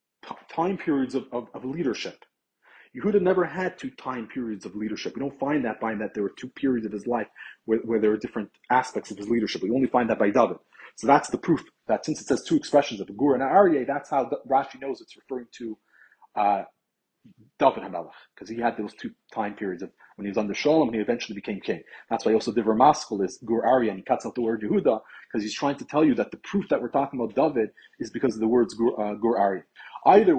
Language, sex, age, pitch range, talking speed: English, male, 30-49, 120-190 Hz, 245 wpm